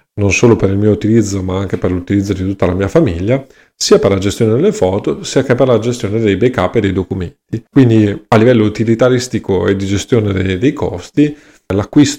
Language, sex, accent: Italian, male, native